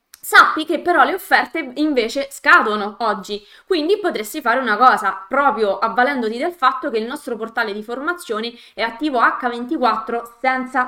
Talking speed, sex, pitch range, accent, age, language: 150 wpm, female, 225-315 Hz, native, 20-39, Italian